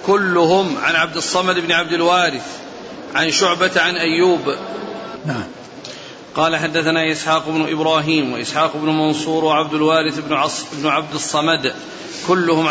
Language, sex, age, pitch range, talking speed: Arabic, male, 40-59, 155-170 Hz, 125 wpm